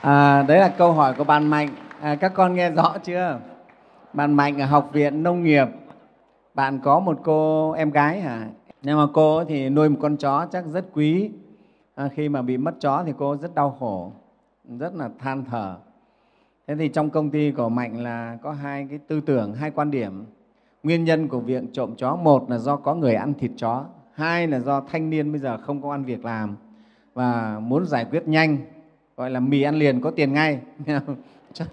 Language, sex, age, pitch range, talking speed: Vietnamese, male, 20-39, 130-160 Hz, 200 wpm